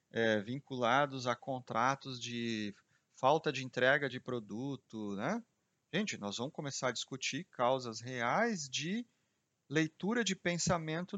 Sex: male